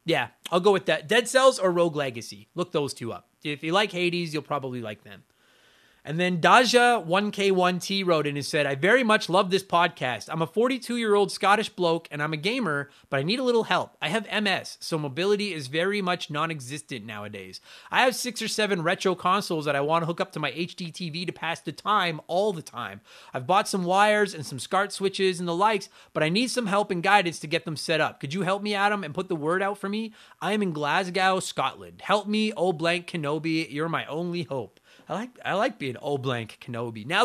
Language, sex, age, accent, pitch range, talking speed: English, male, 30-49, American, 155-205 Hz, 225 wpm